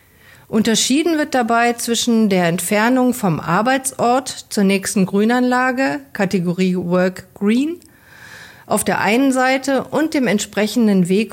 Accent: German